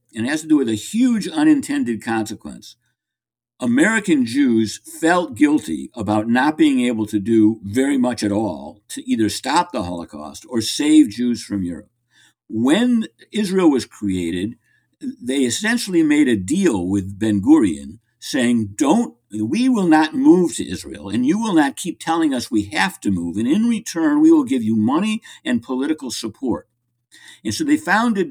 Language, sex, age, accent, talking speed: English, male, 60-79, American, 165 wpm